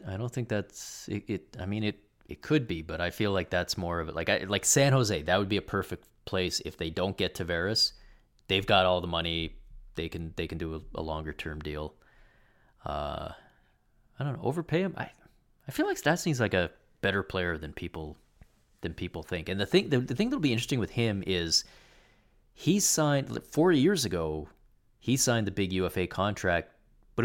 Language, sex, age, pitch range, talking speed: English, male, 30-49, 85-110 Hz, 210 wpm